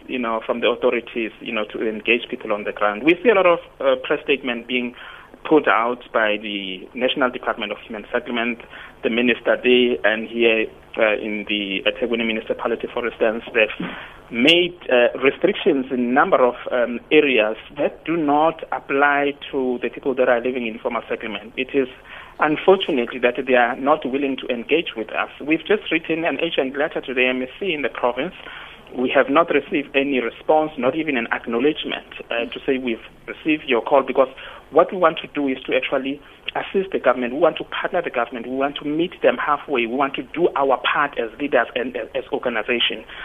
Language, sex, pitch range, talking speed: English, male, 125-160 Hz, 195 wpm